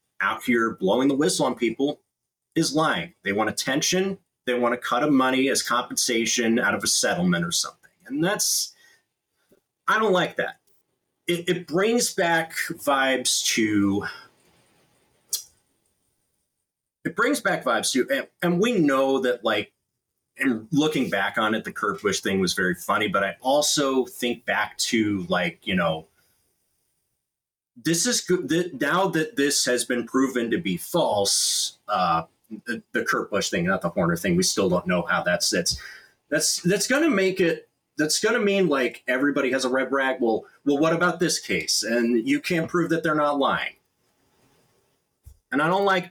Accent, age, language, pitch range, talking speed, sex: American, 30-49, English, 125-175 Hz, 170 wpm, male